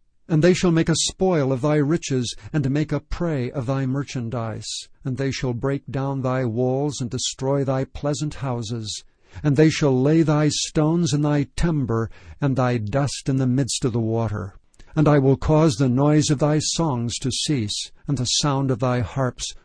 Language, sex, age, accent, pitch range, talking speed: English, male, 60-79, American, 120-150 Hz, 190 wpm